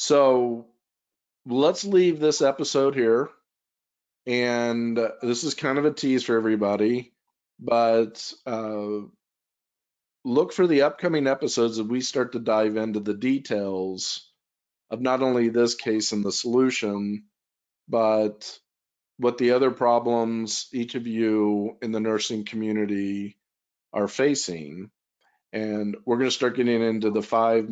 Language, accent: English, American